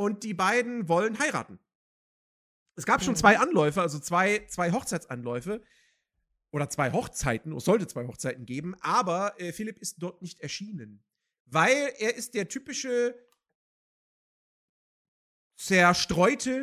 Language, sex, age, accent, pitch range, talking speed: German, male, 40-59, German, 160-220 Hz, 125 wpm